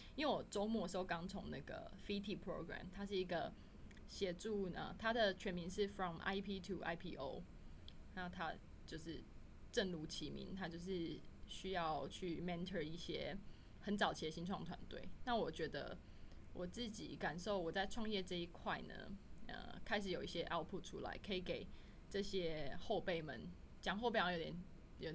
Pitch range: 175-215 Hz